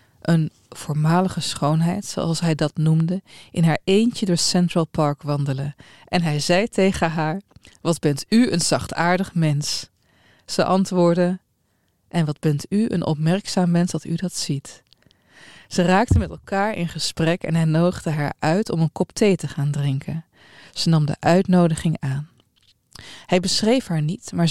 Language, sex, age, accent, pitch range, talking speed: Dutch, female, 20-39, Dutch, 155-180 Hz, 160 wpm